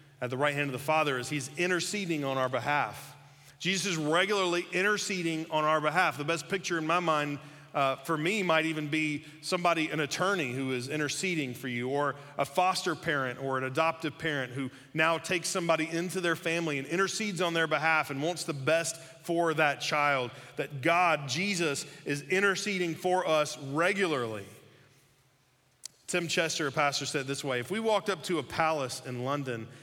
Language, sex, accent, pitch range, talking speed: English, male, American, 140-180 Hz, 185 wpm